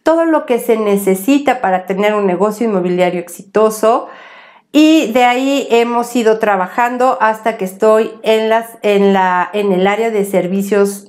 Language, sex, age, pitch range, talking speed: Spanish, female, 50-69, 195-235 Hz, 140 wpm